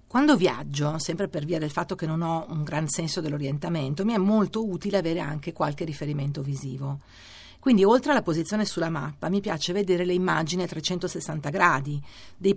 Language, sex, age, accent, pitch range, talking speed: Italian, female, 50-69, native, 150-185 Hz, 180 wpm